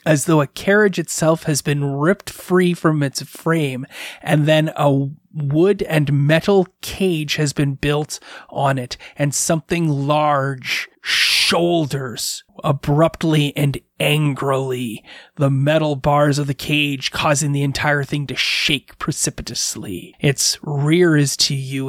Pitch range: 140-175 Hz